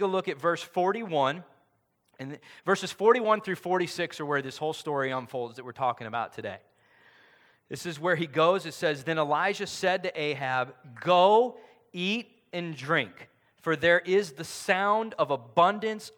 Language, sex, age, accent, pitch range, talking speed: English, male, 40-59, American, 135-180 Hz, 165 wpm